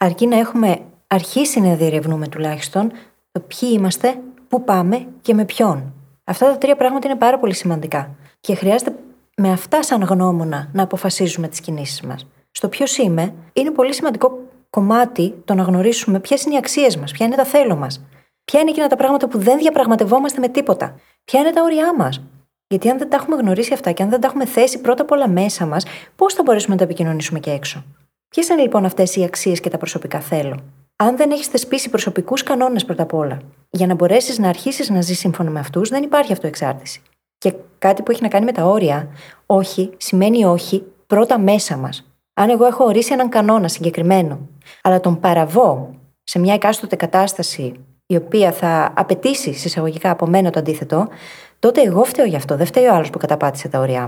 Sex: female